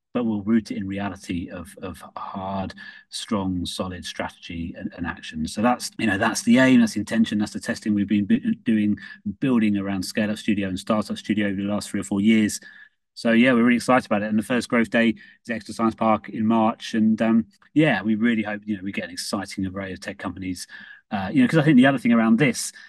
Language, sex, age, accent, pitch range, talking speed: English, male, 30-49, British, 105-130 Hz, 240 wpm